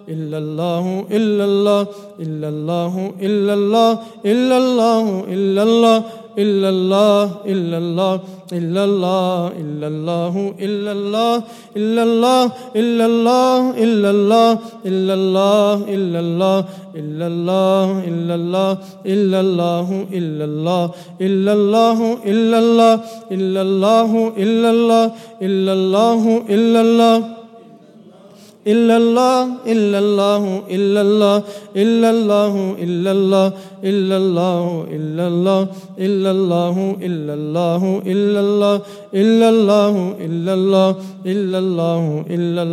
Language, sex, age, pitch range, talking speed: English, male, 20-39, 185-210 Hz, 45 wpm